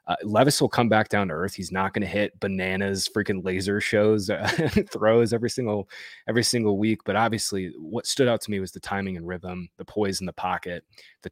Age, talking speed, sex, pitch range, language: 20-39, 225 wpm, male, 90-110 Hz, English